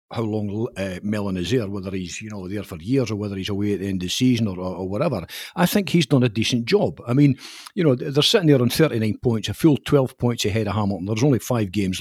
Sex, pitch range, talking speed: male, 105-140 Hz, 275 wpm